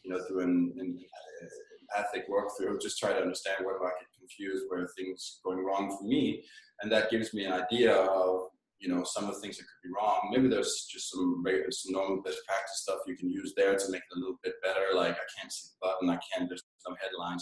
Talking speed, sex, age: 255 wpm, male, 20-39